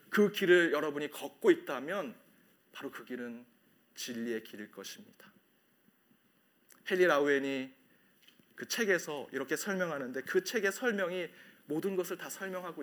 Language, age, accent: Korean, 30-49, native